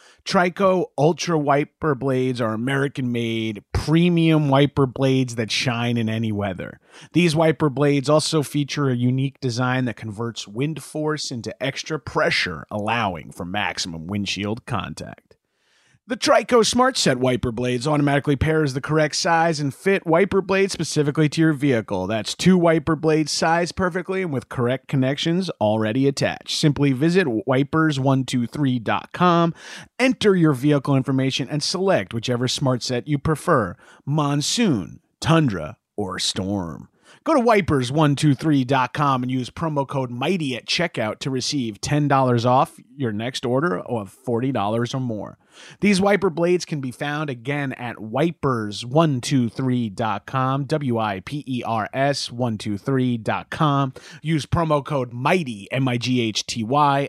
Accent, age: American, 30-49